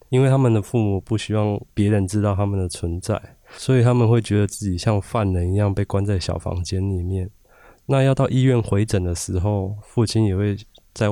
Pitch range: 100-115 Hz